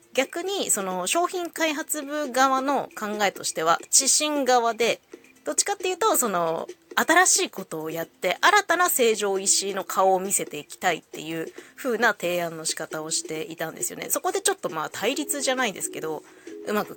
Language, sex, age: Japanese, female, 20-39